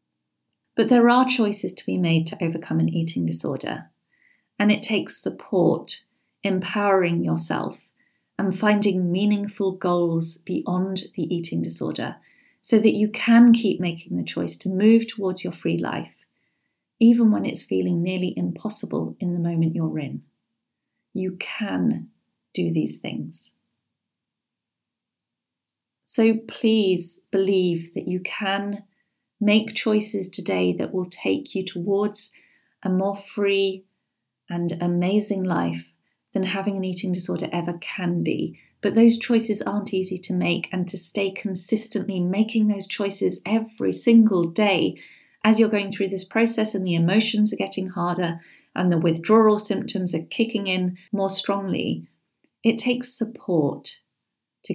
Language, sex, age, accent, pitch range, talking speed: English, female, 40-59, British, 175-210 Hz, 140 wpm